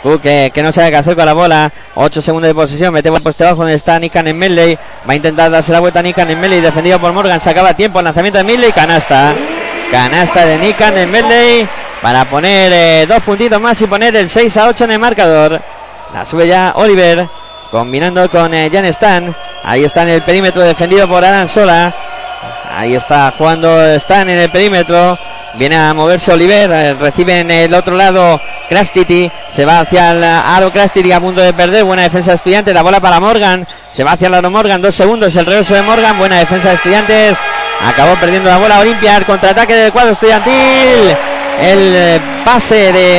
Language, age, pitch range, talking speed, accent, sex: Spanish, 20-39, 165-205 Hz, 200 wpm, Spanish, male